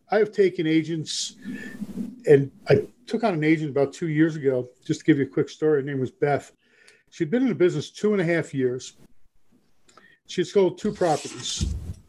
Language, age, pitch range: English, 50-69, 150-195 Hz